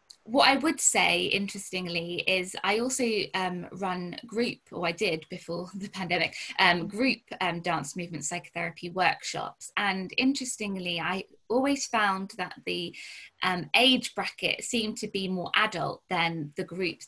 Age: 20-39